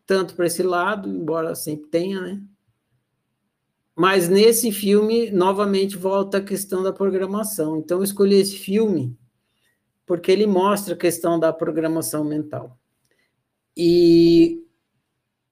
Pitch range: 155-205 Hz